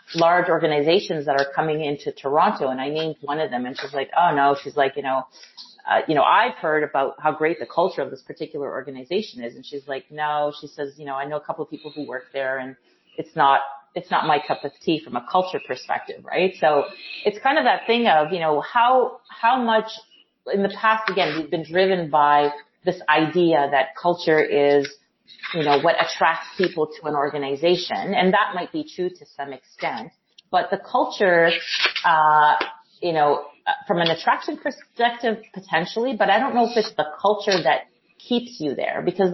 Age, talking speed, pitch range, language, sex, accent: 30-49, 205 wpm, 150-200 Hz, English, female, American